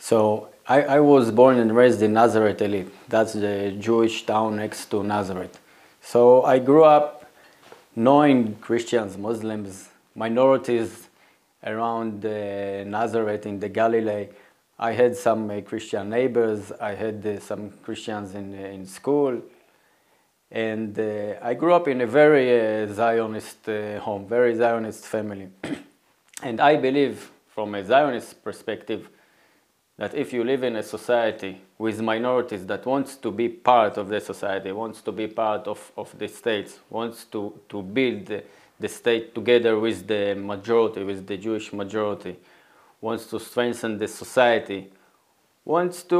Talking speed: 150 wpm